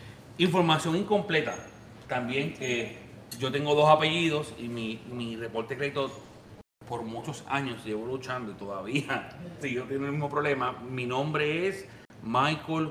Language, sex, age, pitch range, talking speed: Spanish, male, 30-49, 115-155 Hz, 145 wpm